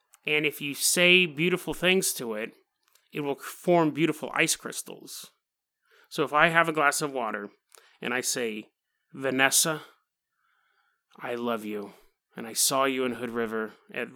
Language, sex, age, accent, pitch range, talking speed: English, male, 30-49, American, 125-155 Hz, 155 wpm